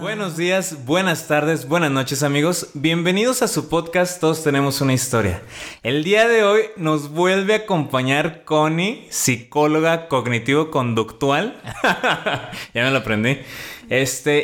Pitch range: 115-160 Hz